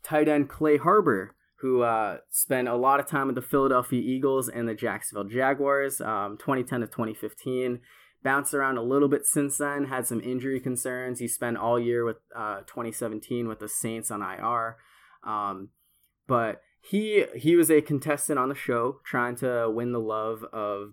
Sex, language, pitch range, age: male, English, 115-145 Hz, 20-39